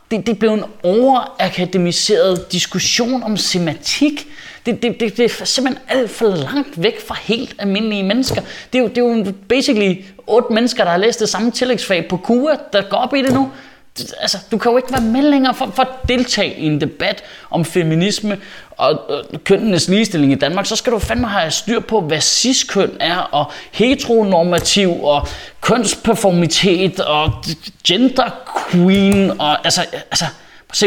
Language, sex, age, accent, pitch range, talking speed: Danish, male, 20-39, native, 160-225 Hz, 170 wpm